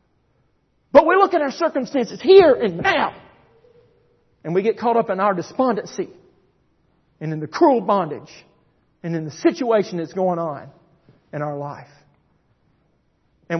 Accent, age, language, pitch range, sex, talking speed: American, 50-69, English, 155-220 Hz, male, 145 wpm